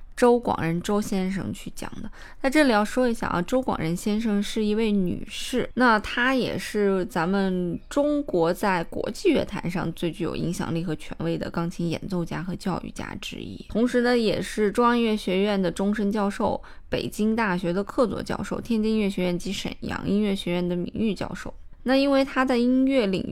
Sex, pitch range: female, 180-240 Hz